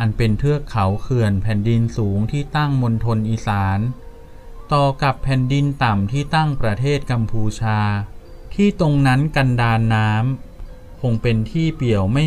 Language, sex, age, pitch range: Thai, male, 20-39, 105-135 Hz